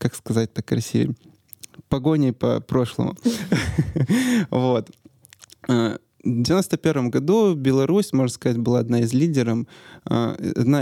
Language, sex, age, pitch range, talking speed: Russian, male, 20-39, 120-155 Hz, 100 wpm